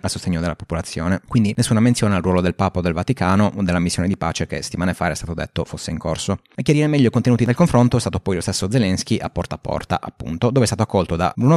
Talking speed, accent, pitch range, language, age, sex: 270 wpm, native, 85-105 Hz, Italian, 30-49, male